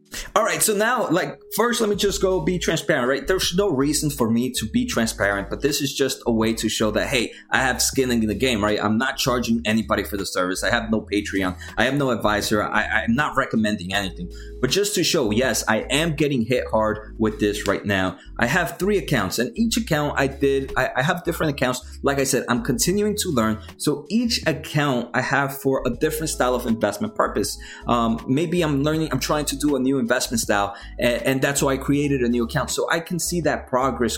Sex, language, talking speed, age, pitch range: male, English, 230 wpm, 20-39, 115-155 Hz